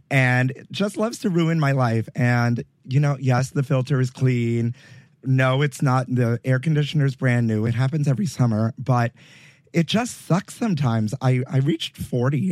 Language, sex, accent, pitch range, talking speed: English, male, American, 125-150 Hz, 180 wpm